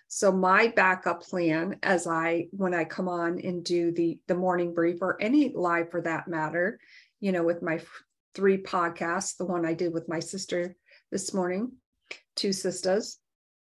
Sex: female